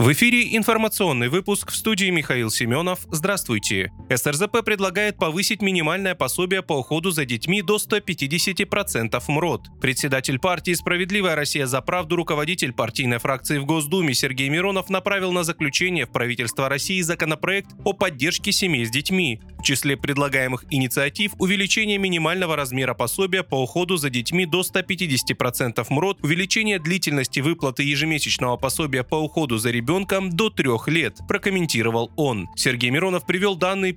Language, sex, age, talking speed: Russian, male, 20-39, 140 wpm